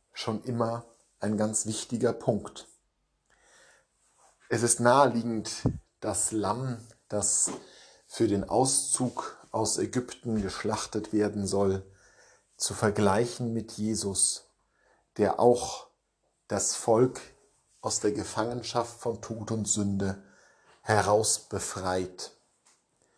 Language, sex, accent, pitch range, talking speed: German, male, German, 100-120 Hz, 95 wpm